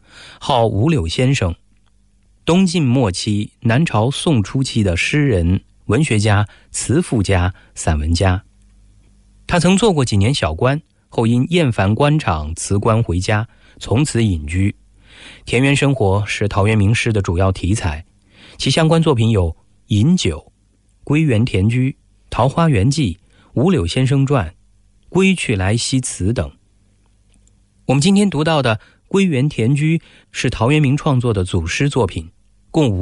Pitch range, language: 100-135 Hz, English